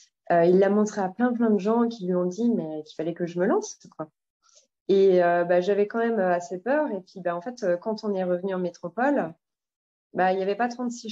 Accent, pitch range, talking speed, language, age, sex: French, 180-225 Hz, 250 wpm, French, 20-39, female